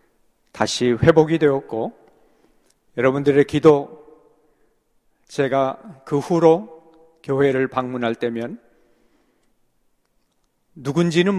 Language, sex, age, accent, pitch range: Korean, male, 40-59, native, 115-145 Hz